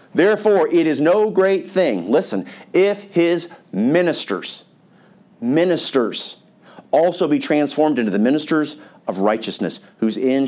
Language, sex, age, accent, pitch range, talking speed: English, male, 40-59, American, 130-190 Hz, 120 wpm